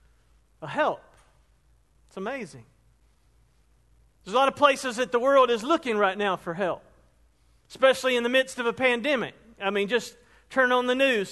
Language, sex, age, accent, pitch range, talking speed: English, male, 40-59, American, 205-255 Hz, 170 wpm